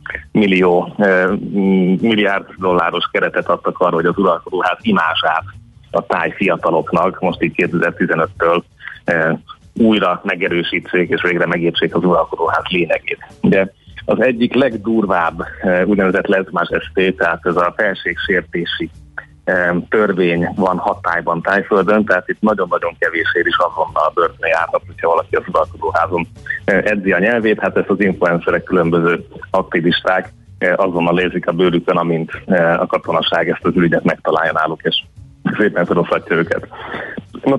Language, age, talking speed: Hungarian, 30-49, 125 wpm